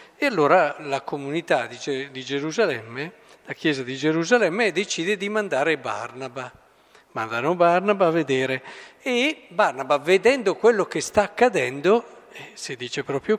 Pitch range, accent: 140-210 Hz, native